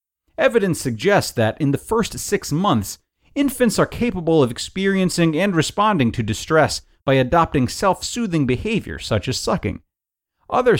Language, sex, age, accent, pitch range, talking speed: English, male, 40-59, American, 110-160 Hz, 140 wpm